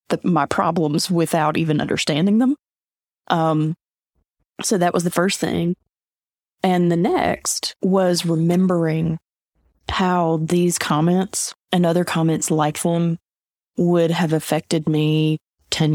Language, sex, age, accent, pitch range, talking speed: English, female, 20-39, American, 155-185 Hz, 120 wpm